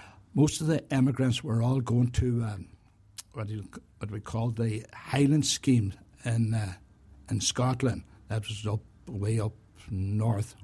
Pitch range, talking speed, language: 105-125 Hz, 160 wpm, English